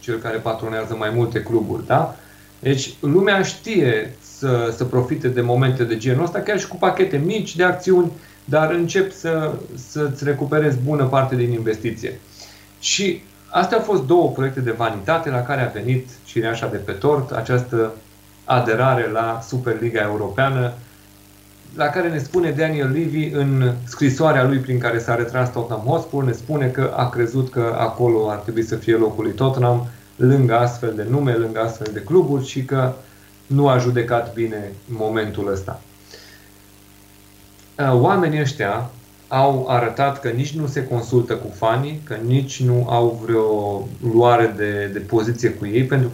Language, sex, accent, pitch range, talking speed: Romanian, male, native, 110-140 Hz, 160 wpm